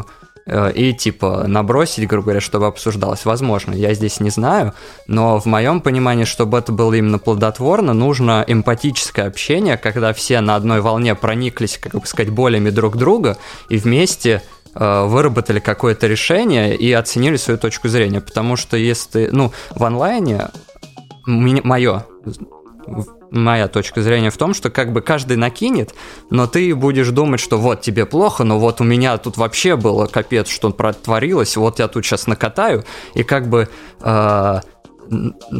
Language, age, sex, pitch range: Russian, 20-39, male, 105-125 Hz